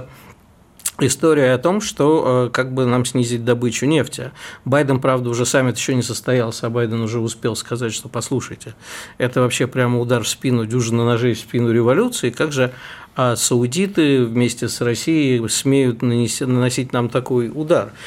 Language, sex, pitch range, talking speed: Russian, male, 120-140 Hz, 155 wpm